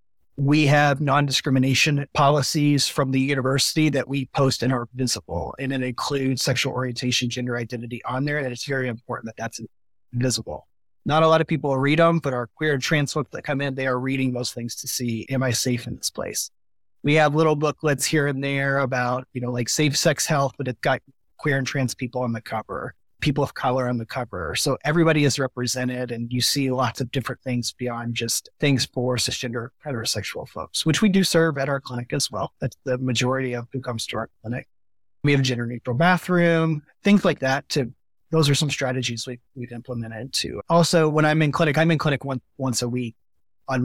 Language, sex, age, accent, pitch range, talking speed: English, male, 30-49, American, 120-145 Hz, 215 wpm